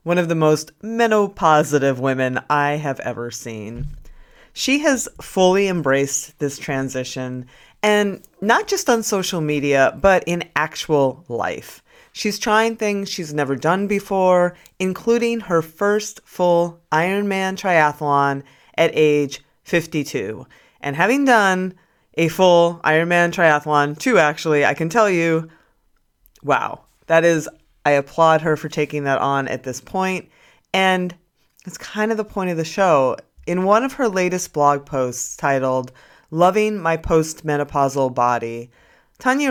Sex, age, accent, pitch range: female, 30-49, American, 145-195 Hz